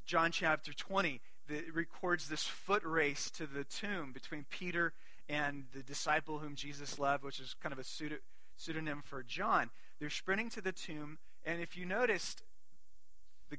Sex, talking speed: male, 170 wpm